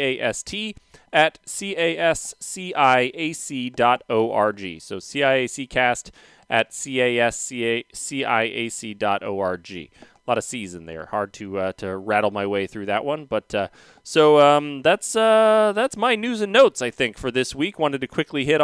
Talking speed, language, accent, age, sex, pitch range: 220 wpm, English, American, 30-49, male, 115-145 Hz